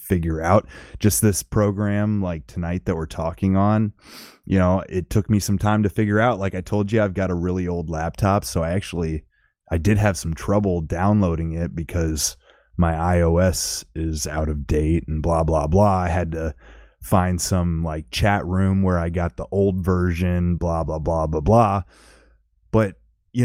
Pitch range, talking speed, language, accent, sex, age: 85-105 Hz, 185 wpm, English, American, male, 20-39